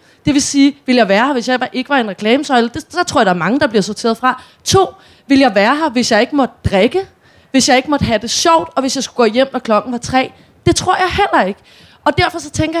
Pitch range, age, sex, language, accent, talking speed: 235-300 Hz, 30-49, female, Danish, native, 285 wpm